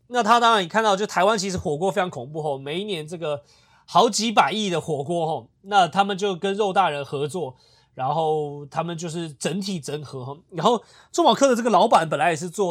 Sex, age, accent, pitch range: male, 30-49, native, 160-215 Hz